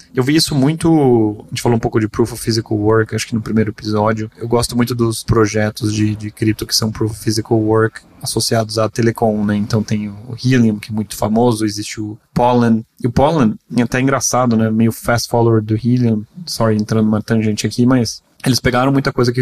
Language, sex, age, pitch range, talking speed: Portuguese, male, 20-39, 110-125 Hz, 220 wpm